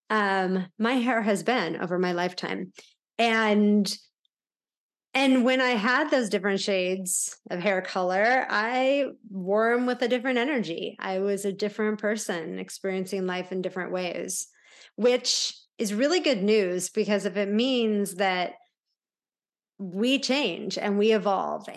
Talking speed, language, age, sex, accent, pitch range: 140 wpm, English, 30-49, female, American, 190-230 Hz